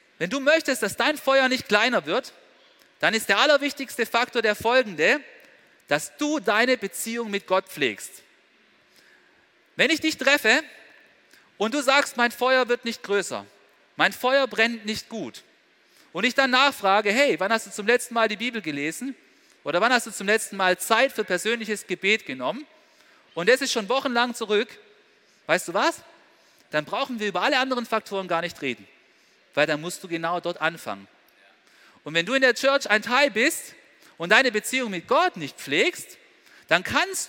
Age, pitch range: 40-59, 190-275 Hz